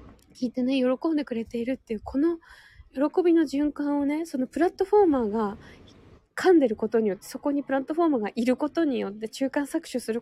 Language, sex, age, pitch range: Japanese, female, 20-39, 225-280 Hz